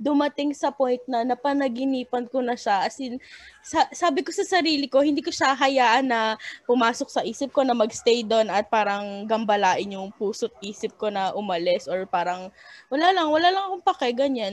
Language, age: Filipino, 20-39